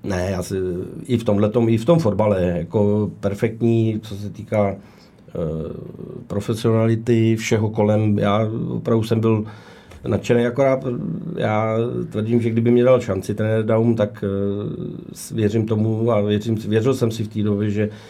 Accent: native